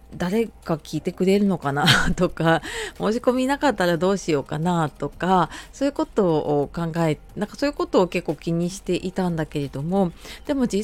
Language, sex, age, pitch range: Japanese, female, 30-49, 160-230 Hz